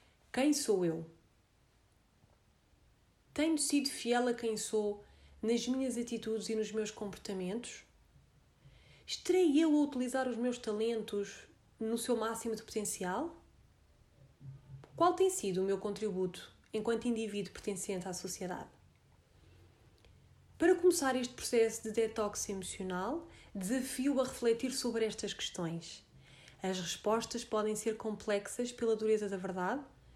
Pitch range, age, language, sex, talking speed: 195-245 Hz, 30-49, Portuguese, female, 120 wpm